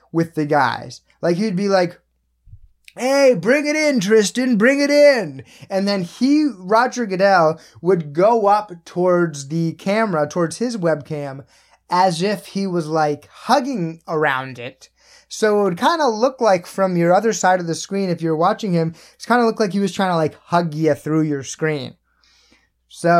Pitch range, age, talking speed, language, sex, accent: 165-260 Hz, 20-39, 185 wpm, English, male, American